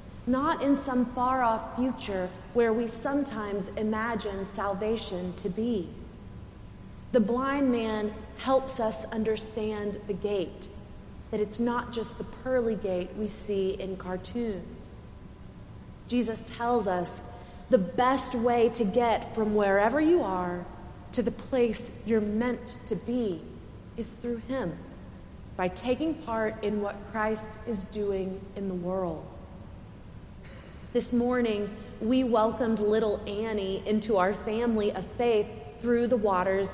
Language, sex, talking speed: English, female, 125 wpm